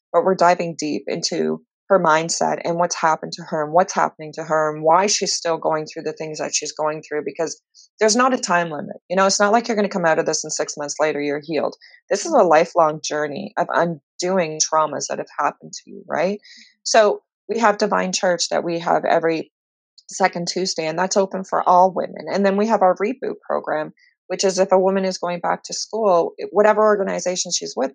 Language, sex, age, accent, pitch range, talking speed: English, female, 30-49, American, 165-205 Hz, 225 wpm